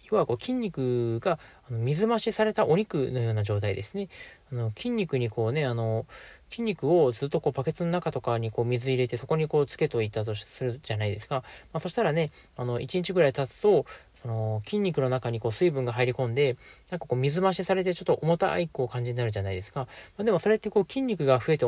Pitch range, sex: 120-180 Hz, male